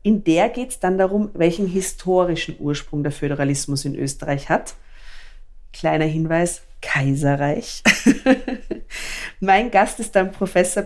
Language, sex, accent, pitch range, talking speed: German, female, German, 150-205 Hz, 120 wpm